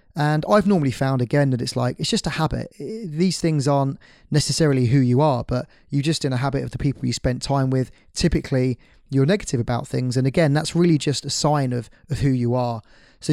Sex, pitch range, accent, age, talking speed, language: male, 125-145 Hz, British, 20-39, 225 wpm, English